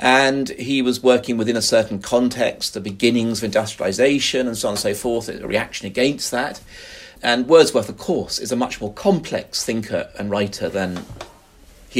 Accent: British